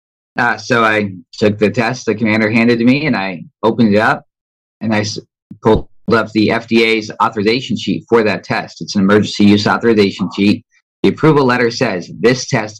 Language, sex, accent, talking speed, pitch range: English, male, American, 185 wpm, 100-115 Hz